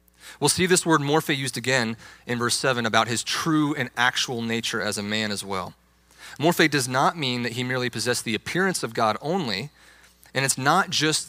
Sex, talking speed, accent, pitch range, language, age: male, 200 wpm, American, 110-145 Hz, English, 30-49